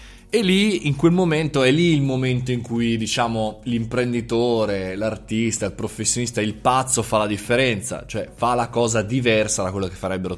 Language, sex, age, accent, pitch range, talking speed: Italian, male, 20-39, native, 100-130 Hz, 175 wpm